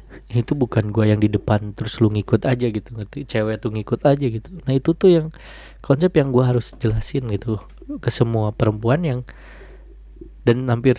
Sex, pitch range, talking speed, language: male, 105-135 Hz, 180 wpm, Indonesian